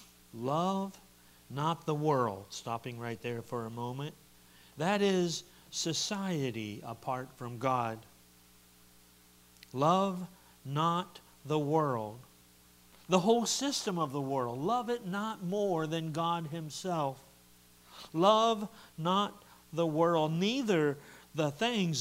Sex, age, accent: male, 60-79, American